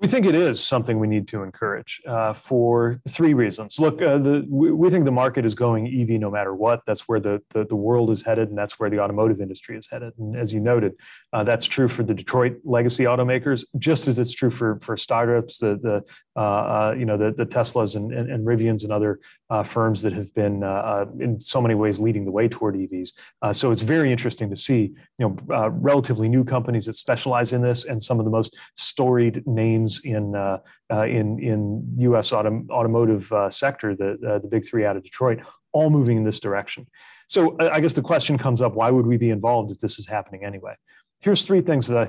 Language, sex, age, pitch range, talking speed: English, male, 30-49, 110-130 Hz, 230 wpm